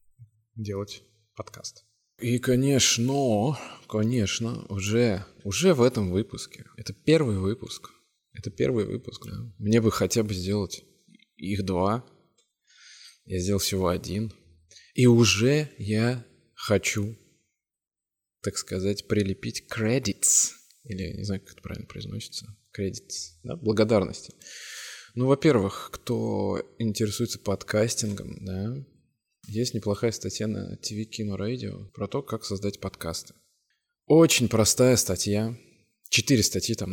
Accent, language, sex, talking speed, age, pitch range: native, Russian, male, 110 wpm, 20-39, 100-125 Hz